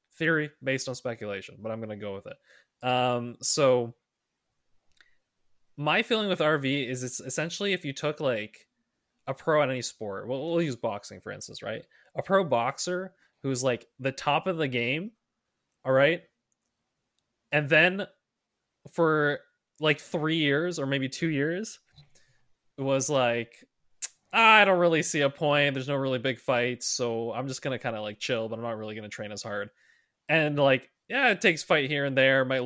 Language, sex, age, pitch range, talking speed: English, male, 20-39, 115-145 Hz, 180 wpm